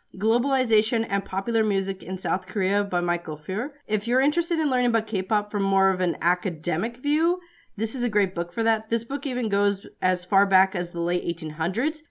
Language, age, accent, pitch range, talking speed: English, 30-49, American, 190-235 Hz, 205 wpm